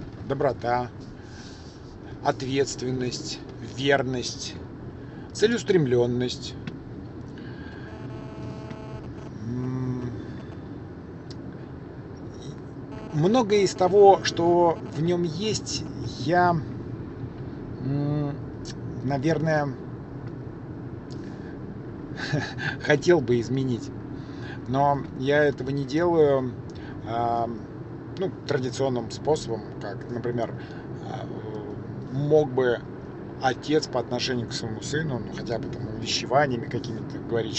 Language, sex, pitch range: Russian, male, 125-150 Hz